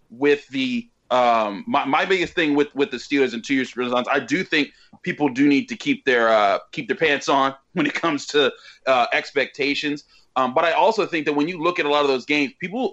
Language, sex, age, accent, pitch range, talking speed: English, male, 30-49, American, 130-165 Hz, 235 wpm